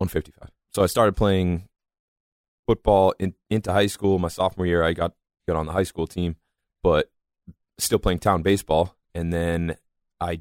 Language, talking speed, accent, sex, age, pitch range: English, 160 wpm, American, male, 20-39, 80-95 Hz